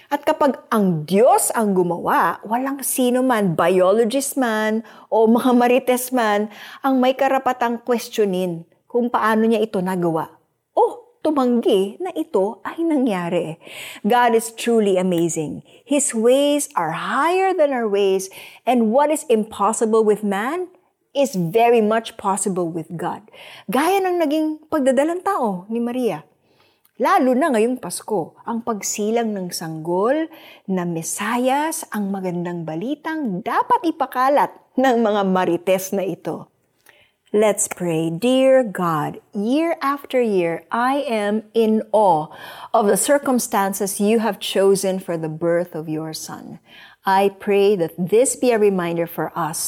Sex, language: female, Filipino